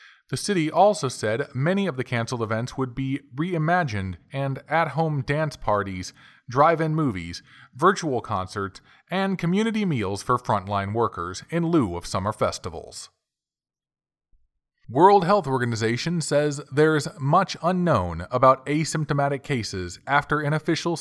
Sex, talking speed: male, 125 wpm